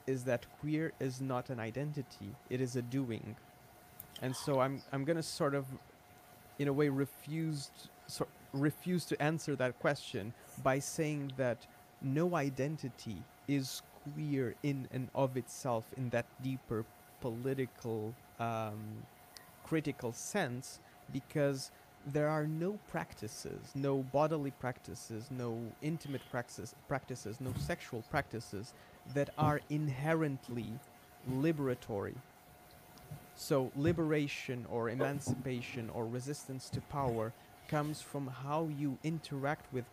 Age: 30-49